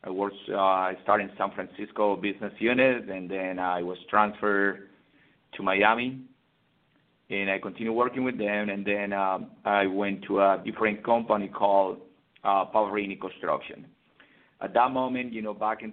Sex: male